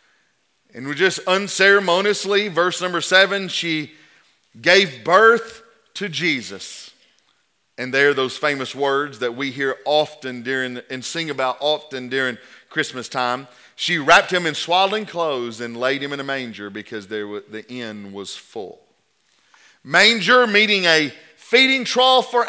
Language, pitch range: English, 125-210 Hz